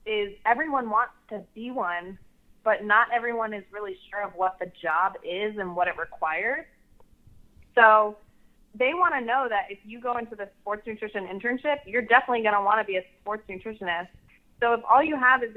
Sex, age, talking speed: female, 20-39, 195 wpm